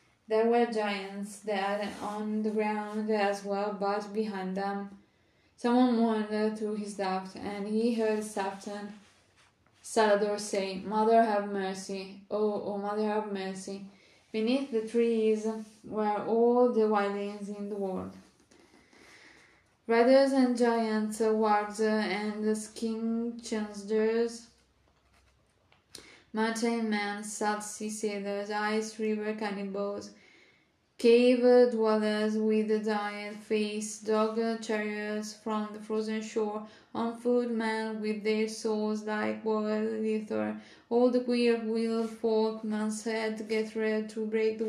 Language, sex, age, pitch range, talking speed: English, female, 10-29, 205-220 Hz, 120 wpm